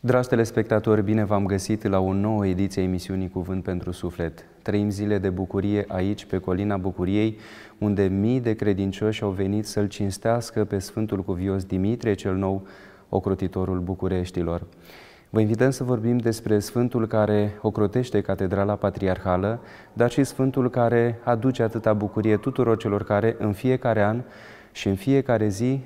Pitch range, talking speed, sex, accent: 100-115 Hz, 150 wpm, male, native